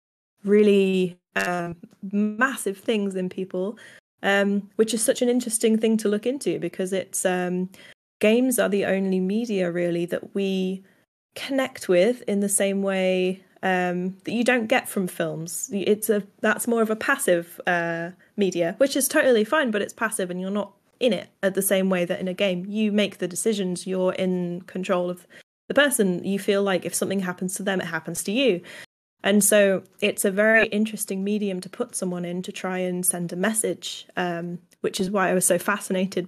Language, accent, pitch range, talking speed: English, British, 180-210 Hz, 190 wpm